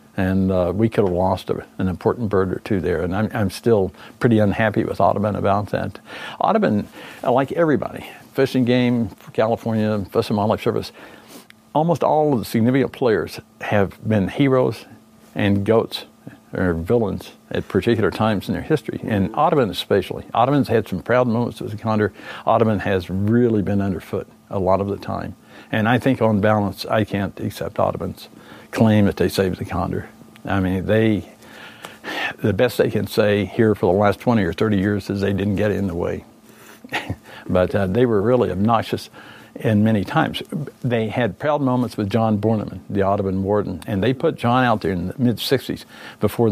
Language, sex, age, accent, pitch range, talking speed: English, male, 60-79, American, 100-115 Hz, 185 wpm